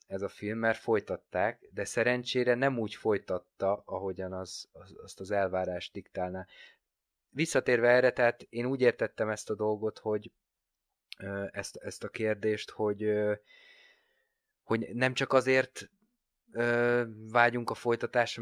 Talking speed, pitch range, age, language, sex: 120 wpm, 100-125 Hz, 20-39, Hungarian, male